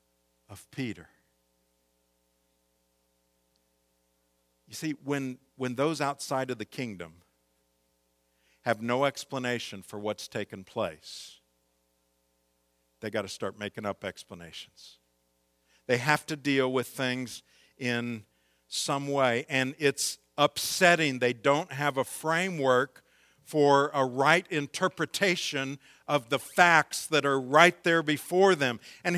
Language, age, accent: English, 50-69, American